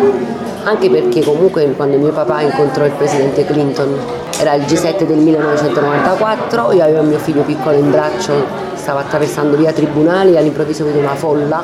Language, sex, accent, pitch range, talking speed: Italian, female, native, 145-185 Hz, 165 wpm